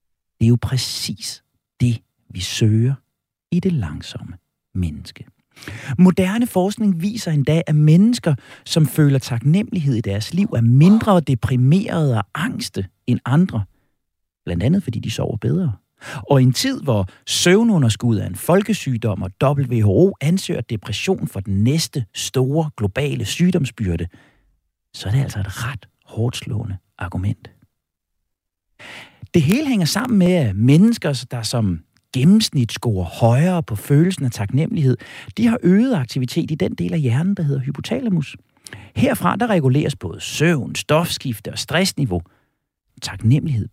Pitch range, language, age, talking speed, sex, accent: 105-165 Hz, Danish, 40-59, 135 wpm, male, native